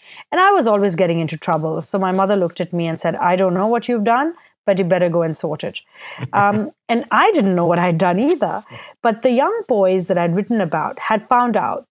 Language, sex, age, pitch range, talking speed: English, female, 30-49, 175-215 Hz, 240 wpm